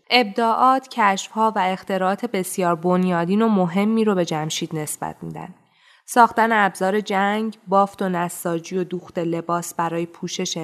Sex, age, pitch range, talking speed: female, 20-39, 175-230 Hz, 135 wpm